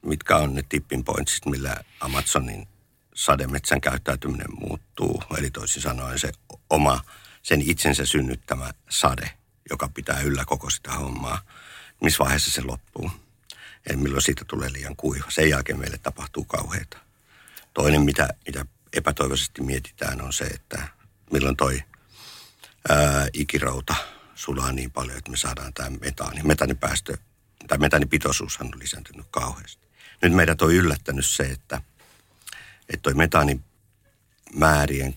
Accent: native